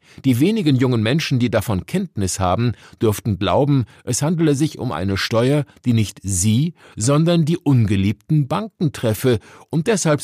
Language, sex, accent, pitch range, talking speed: German, male, German, 105-150 Hz, 150 wpm